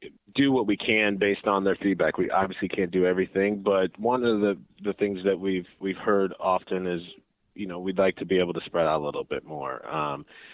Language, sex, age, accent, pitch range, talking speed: English, male, 30-49, American, 90-100 Hz, 230 wpm